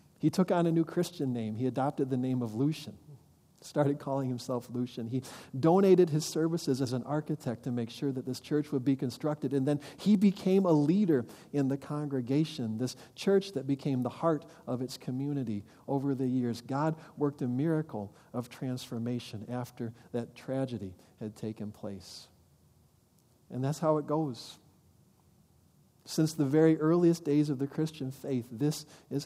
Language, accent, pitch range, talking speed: English, American, 125-155 Hz, 170 wpm